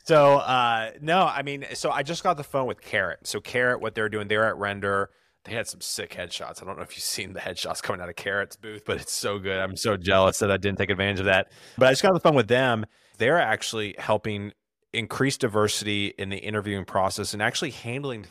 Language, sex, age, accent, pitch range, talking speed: English, male, 30-49, American, 100-140 Hz, 240 wpm